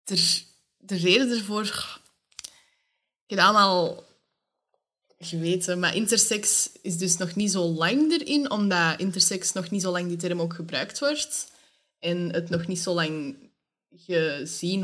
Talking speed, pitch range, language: 140 wpm, 175-250 Hz, Dutch